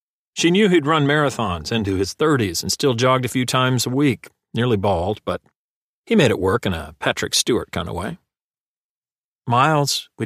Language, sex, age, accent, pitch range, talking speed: English, male, 40-59, American, 105-165 Hz, 185 wpm